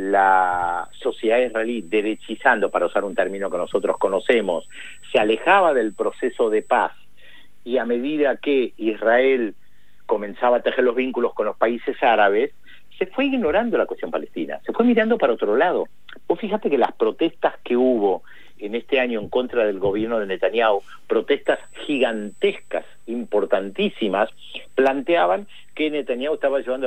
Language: Spanish